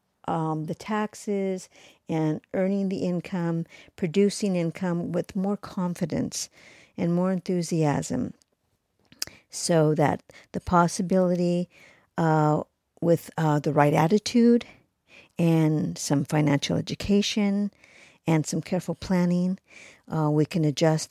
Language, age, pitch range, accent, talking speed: English, 50-69, 155-185 Hz, American, 105 wpm